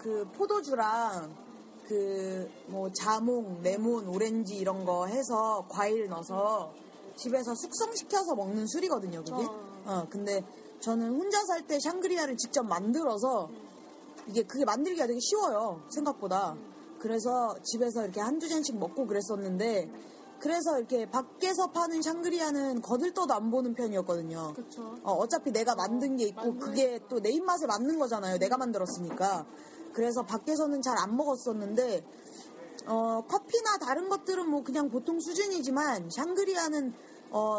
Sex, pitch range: female, 215-315 Hz